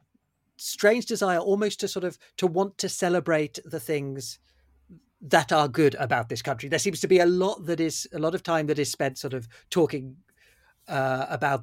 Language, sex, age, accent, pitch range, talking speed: English, male, 40-59, British, 125-160 Hz, 195 wpm